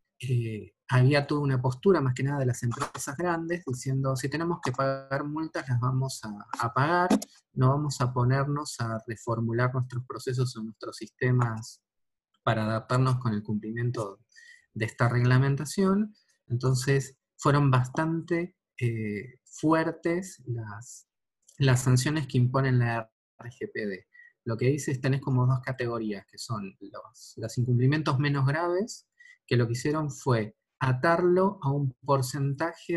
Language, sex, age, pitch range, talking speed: Spanish, male, 20-39, 120-155 Hz, 140 wpm